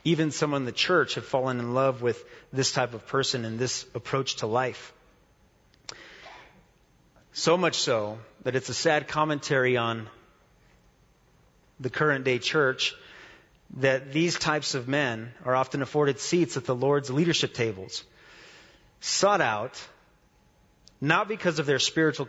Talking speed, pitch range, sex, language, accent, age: 145 wpm, 120-150 Hz, male, English, American, 30-49